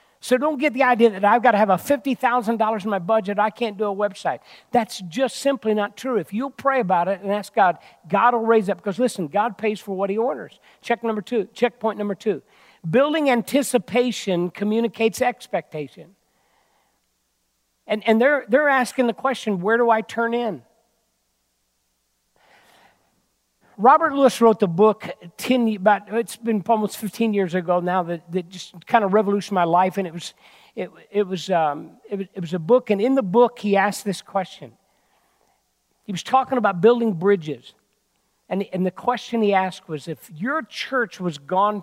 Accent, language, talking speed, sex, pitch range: American, English, 185 wpm, male, 180-235 Hz